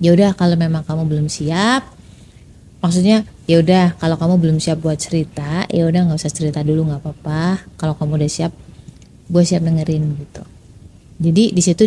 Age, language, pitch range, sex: 20-39, Indonesian, 160-205 Hz, female